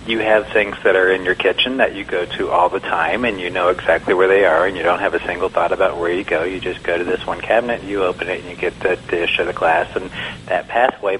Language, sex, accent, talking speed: English, male, American, 290 wpm